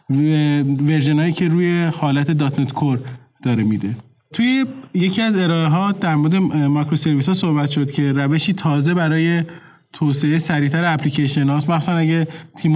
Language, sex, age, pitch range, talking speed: Persian, male, 20-39, 145-175 Hz, 140 wpm